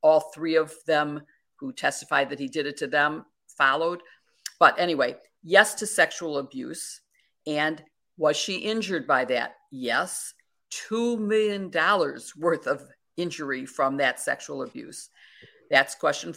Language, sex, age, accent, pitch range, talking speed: English, female, 50-69, American, 145-190 Hz, 135 wpm